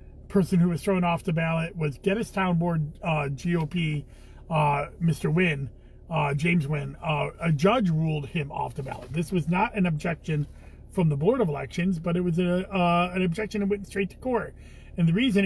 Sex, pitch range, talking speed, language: male, 155-195 Hz, 200 wpm, English